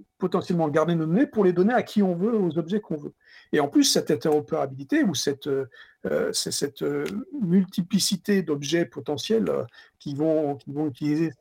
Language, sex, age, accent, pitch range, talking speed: French, male, 50-69, French, 145-200 Hz, 175 wpm